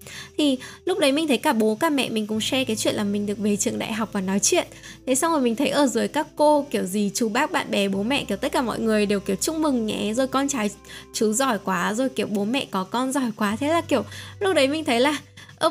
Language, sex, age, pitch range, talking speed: Vietnamese, female, 10-29, 210-275 Hz, 285 wpm